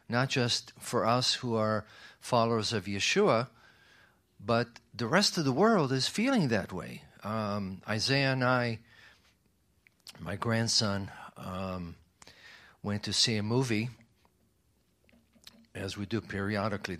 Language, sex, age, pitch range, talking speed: English, male, 50-69, 100-120 Hz, 125 wpm